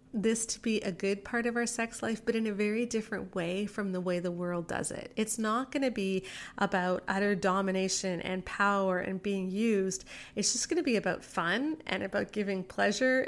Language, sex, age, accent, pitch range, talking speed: English, female, 30-49, American, 195-240 Hz, 210 wpm